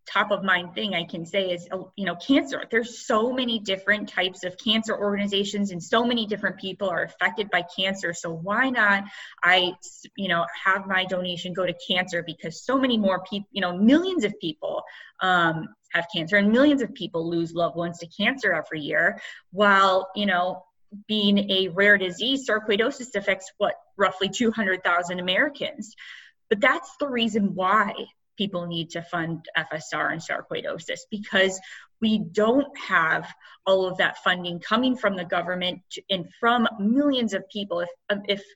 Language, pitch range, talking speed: English, 180-220 Hz, 170 wpm